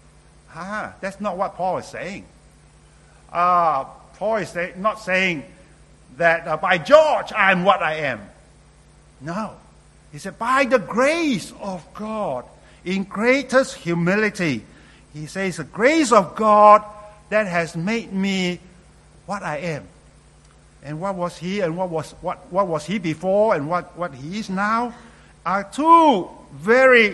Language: English